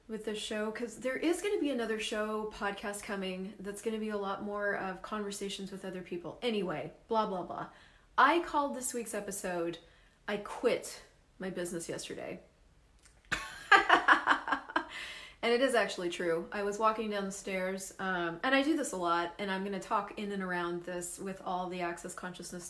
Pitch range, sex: 180-220 Hz, female